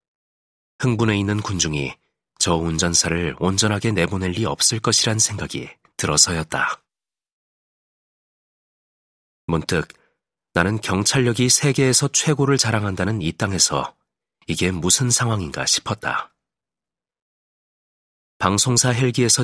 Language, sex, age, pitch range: Korean, male, 30-49, 85-115 Hz